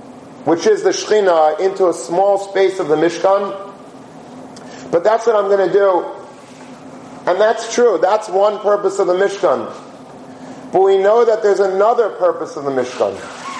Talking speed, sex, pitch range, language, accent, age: 165 wpm, male, 175-205 Hz, English, American, 40-59